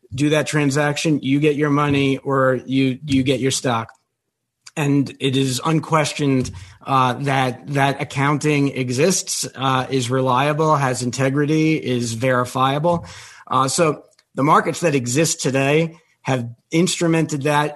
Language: English